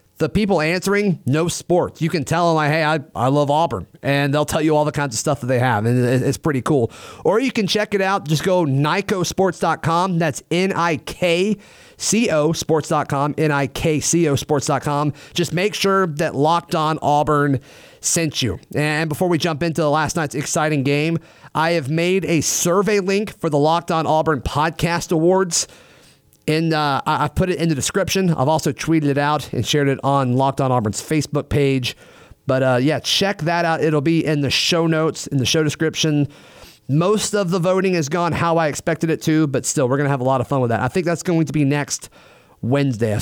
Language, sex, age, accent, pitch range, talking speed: English, male, 30-49, American, 140-170 Hz, 200 wpm